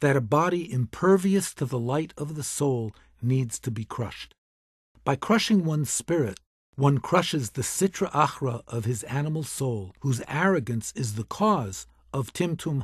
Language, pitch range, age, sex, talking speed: English, 120-175 Hz, 50-69, male, 160 wpm